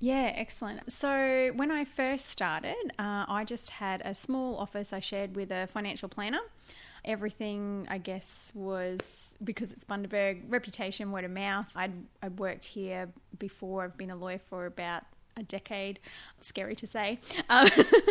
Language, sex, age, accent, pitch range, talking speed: English, female, 20-39, Australian, 185-225 Hz, 160 wpm